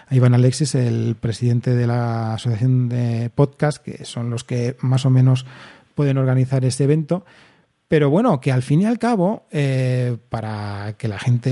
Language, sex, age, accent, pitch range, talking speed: Spanish, male, 30-49, Spanish, 125-155 Hz, 175 wpm